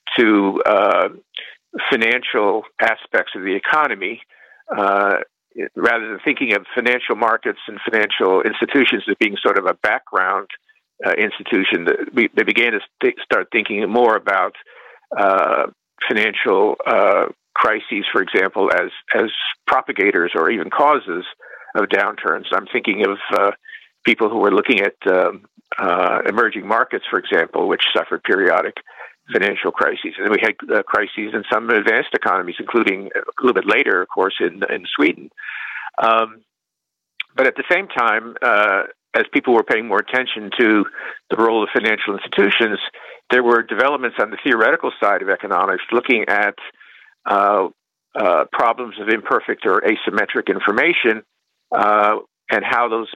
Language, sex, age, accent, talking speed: English, male, 50-69, American, 145 wpm